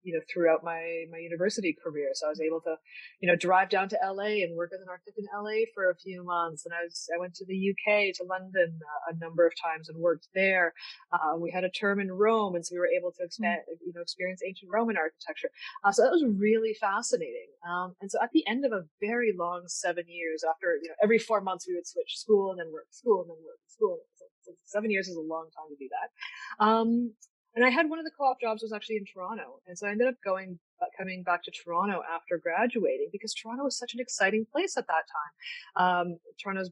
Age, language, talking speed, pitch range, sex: 30-49, English, 245 wpm, 175-225 Hz, female